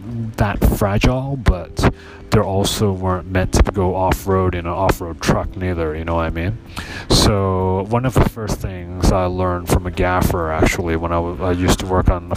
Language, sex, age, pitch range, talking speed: English, male, 30-49, 85-105 Hz, 200 wpm